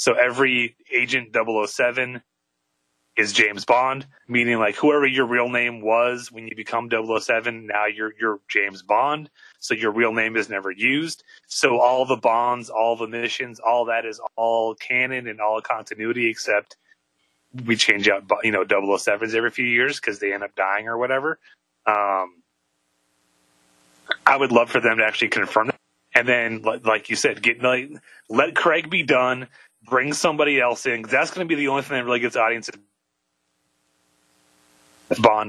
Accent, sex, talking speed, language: American, male, 165 wpm, English